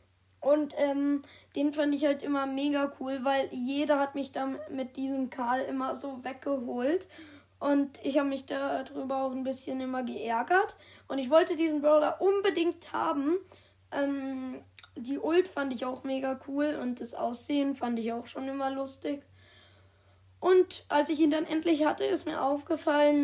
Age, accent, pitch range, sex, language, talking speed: 10-29, German, 235-295 Hz, female, German, 170 wpm